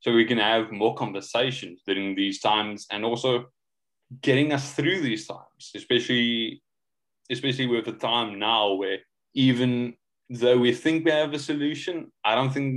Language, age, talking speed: English, 20-39, 160 wpm